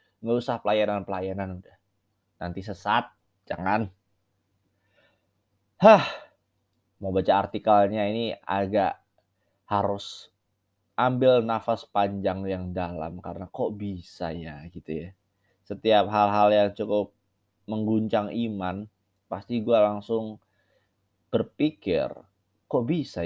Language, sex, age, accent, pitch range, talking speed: Indonesian, male, 20-39, native, 95-110 Hz, 95 wpm